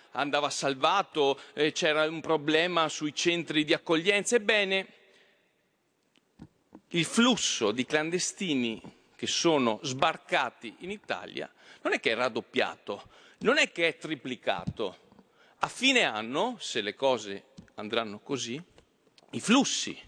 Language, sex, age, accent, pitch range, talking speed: Italian, male, 40-59, native, 130-205 Hz, 120 wpm